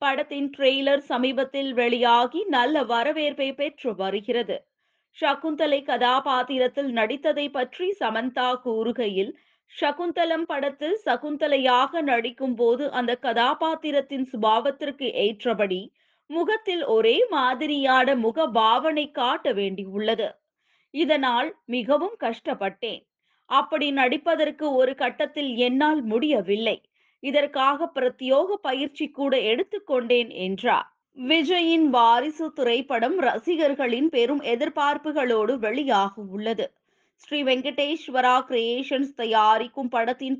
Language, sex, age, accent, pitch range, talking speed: Tamil, female, 20-39, native, 245-305 Hz, 85 wpm